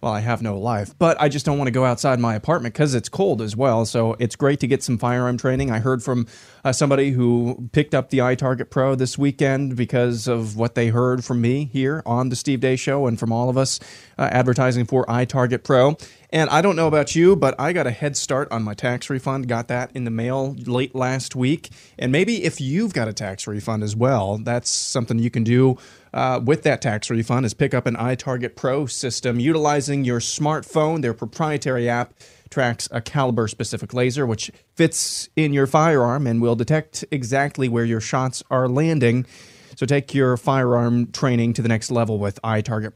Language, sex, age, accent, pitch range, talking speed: English, male, 30-49, American, 120-145 Hz, 210 wpm